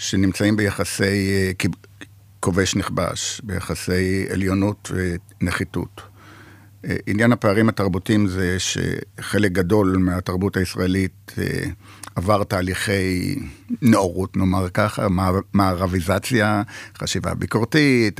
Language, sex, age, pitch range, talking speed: Hebrew, male, 60-79, 95-105 Hz, 75 wpm